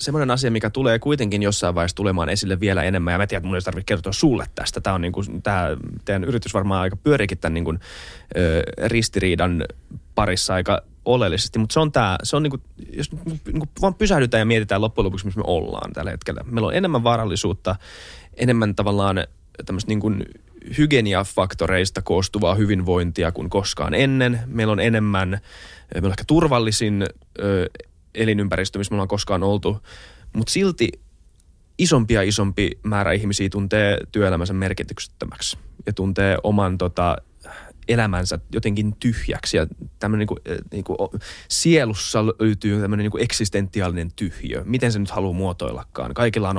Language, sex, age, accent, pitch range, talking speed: Finnish, male, 20-39, native, 95-115 Hz, 150 wpm